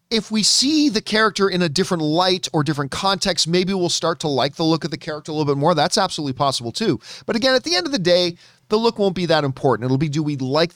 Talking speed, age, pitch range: 275 wpm, 40-59, 135-180 Hz